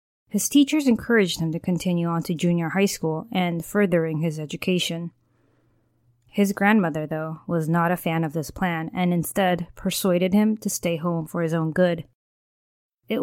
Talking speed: 170 wpm